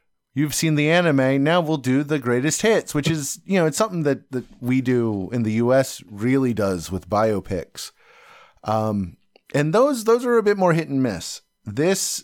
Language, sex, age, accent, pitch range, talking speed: English, male, 30-49, American, 115-180 Hz, 190 wpm